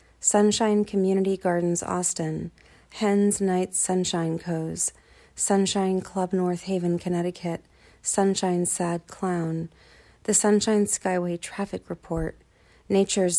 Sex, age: female, 30-49